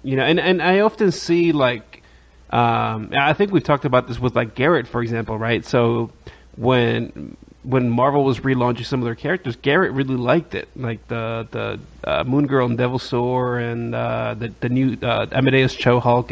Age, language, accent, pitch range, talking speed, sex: 30-49, English, American, 115-140 Hz, 195 wpm, male